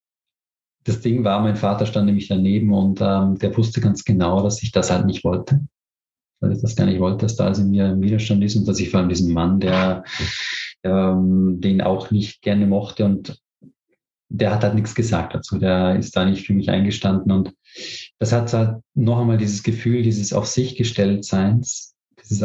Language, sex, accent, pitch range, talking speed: German, male, German, 95-110 Hz, 195 wpm